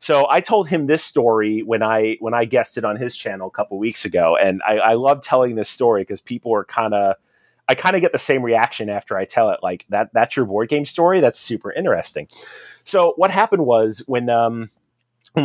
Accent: American